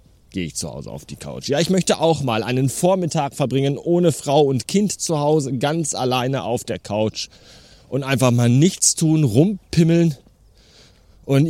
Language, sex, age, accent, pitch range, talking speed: German, male, 30-49, German, 105-160 Hz, 170 wpm